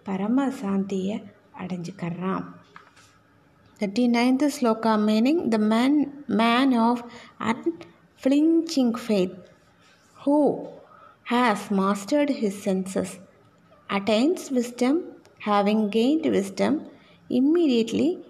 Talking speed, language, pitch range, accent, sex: 80 wpm, Tamil, 210-265 Hz, native, female